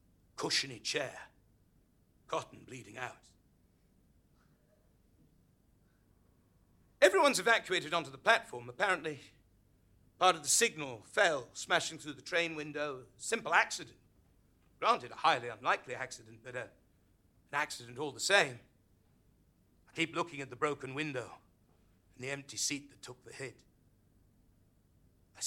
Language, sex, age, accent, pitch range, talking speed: English, male, 60-79, British, 100-140 Hz, 120 wpm